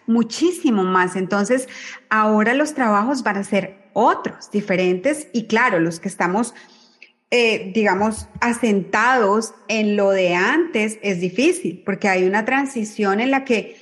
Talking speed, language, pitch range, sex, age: 140 wpm, Spanish, 200-255 Hz, female, 30-49